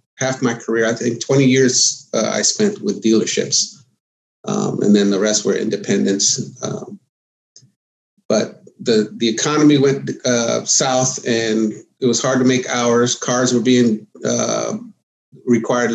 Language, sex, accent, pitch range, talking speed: English, male, American, 110-130 Hz, 145 wpm